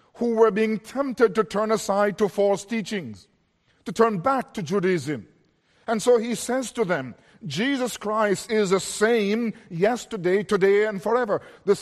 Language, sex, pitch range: English, male, 185-230 Hz